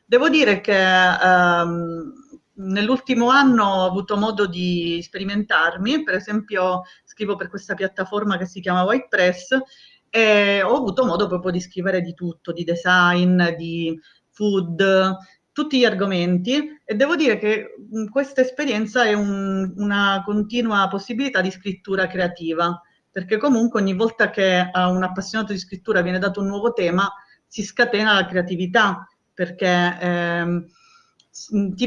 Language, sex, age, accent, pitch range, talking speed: Italian, female, 40-59, native, 185-225 Hz, 140 wpm